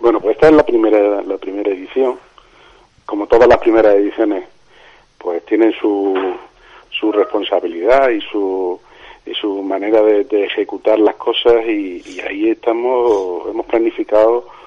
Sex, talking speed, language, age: male, 145 wpm, Spanish, 40-59